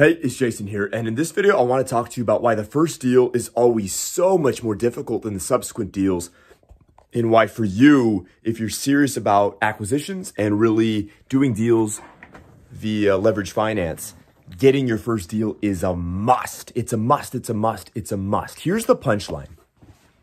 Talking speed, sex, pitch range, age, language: 190 wpm, male, 95-125 Hz, 30-49, English